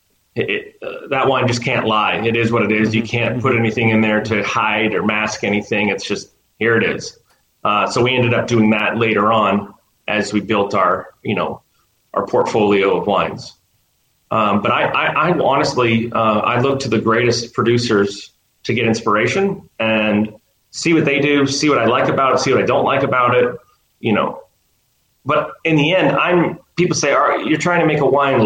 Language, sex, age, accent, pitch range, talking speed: English, male, 30-49, American, 110-140 Hz, 205 wpm